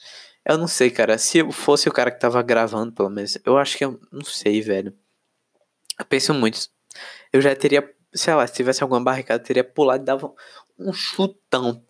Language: Portuguese